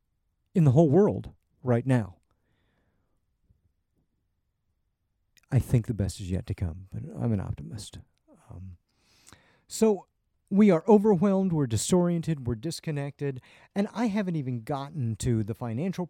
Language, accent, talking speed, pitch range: English, American, 130 wpm, 105-160 Hz